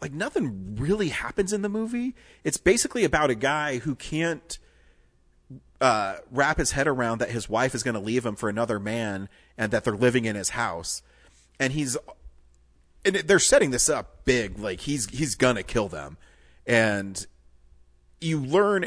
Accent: American